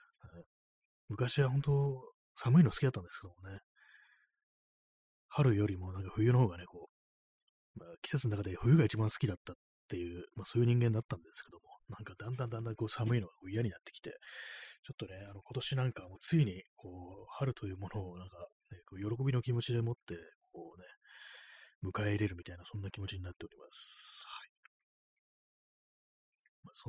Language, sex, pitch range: Japanese, male, 95-135 Hz